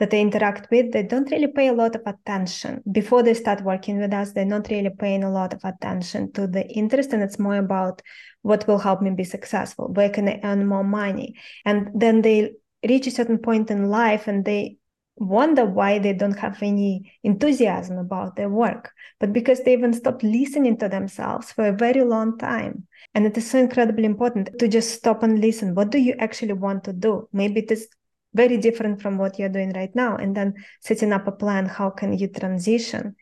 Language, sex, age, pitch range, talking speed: English, female, 20-39, 200-230 Hz, 215 wpm